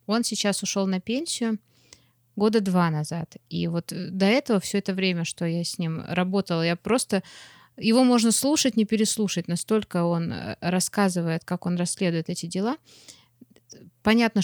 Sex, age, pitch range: female, 20-39, 170-210 Hz